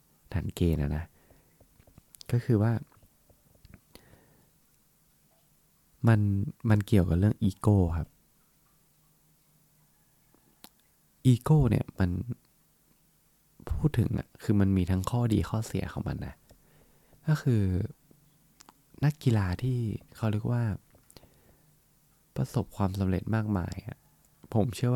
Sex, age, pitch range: male, 20-39, 90-125 Hz